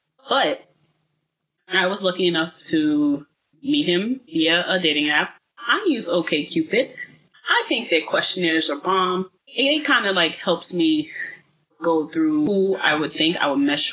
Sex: female